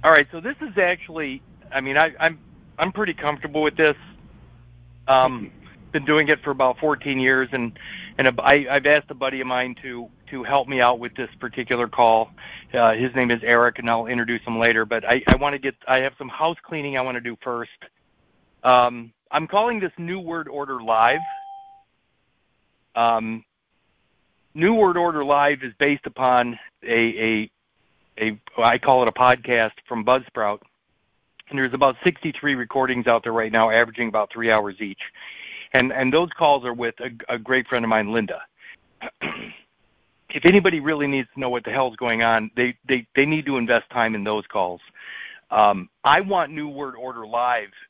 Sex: male